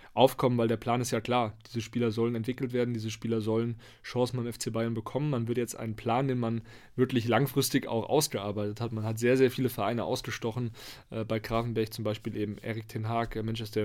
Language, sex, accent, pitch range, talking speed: German, male, German, 110-130 Hz, 210 wpm